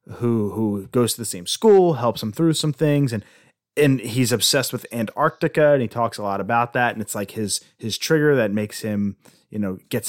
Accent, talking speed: American, 220 wpm